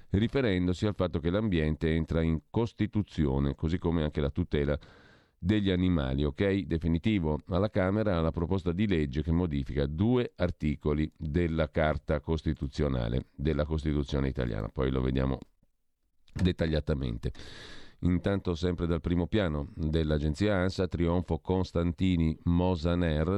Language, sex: Italian, male